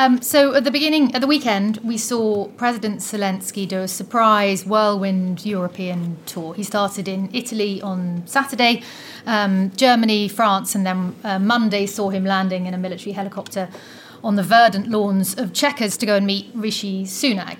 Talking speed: 170 wpm